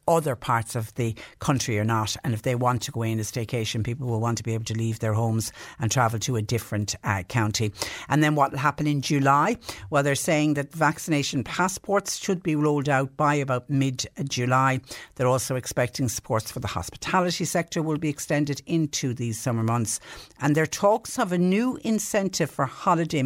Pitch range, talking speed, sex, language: 120-145 Hz, 200 wpm, female, English